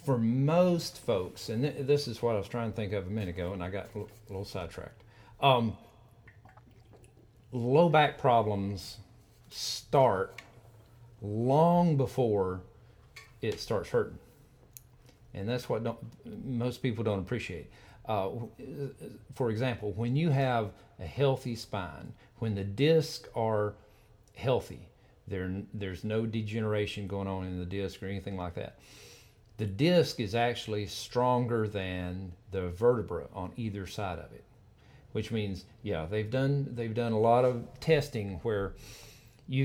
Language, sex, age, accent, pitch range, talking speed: English, male, 50-69, American, 105-120 Hz, 145 wpm